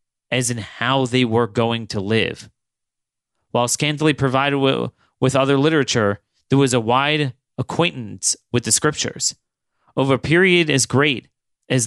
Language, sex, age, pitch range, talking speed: English, male, 30-49, 115-140 Hz, 140 wpm